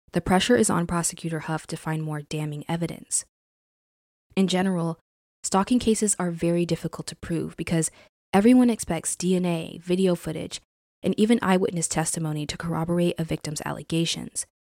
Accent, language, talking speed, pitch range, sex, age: American, English, 145 wpm, 150-185 Hz, female, 20-39